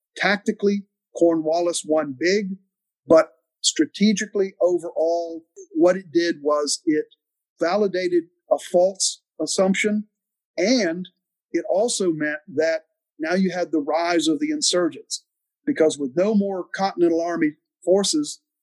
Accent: American